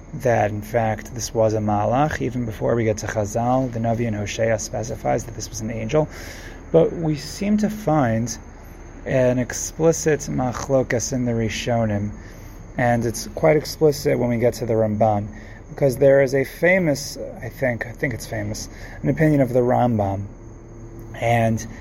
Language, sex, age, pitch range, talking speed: English, male, 30-49, 110-140 Hz, 170 wpm